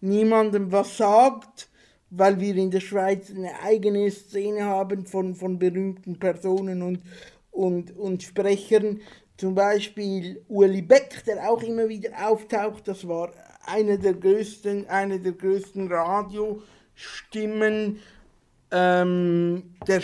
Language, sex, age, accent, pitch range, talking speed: German, male, 60-79, Austrian, 185-215 Hz, 120 wpm